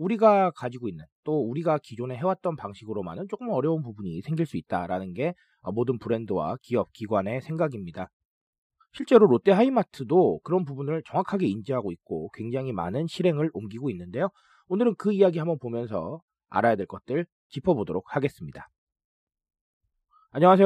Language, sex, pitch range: Korean, male, 120-195 Hz